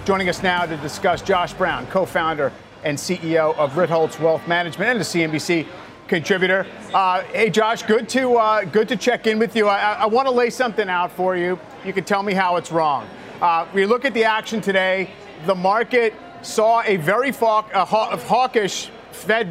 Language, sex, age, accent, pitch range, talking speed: English, male, 40-59, American, 175-215 Hz, 175 wpm